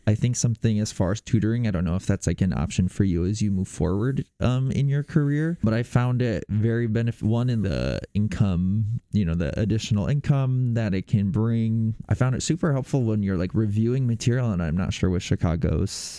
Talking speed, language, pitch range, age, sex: 220 wpm, English, 95-115 Hz, 20-39, male